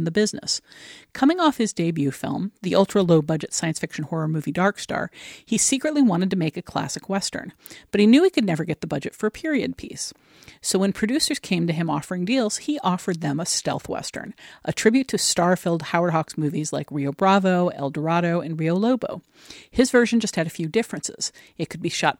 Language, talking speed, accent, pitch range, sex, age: English, 210 wpm, American, 160-215 Hz, female, 50-69